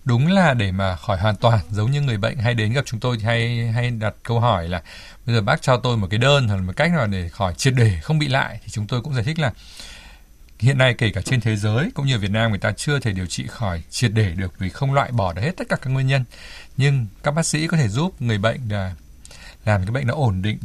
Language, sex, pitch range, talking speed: Vietnamese, male, 100-135 Hz, 285 wpm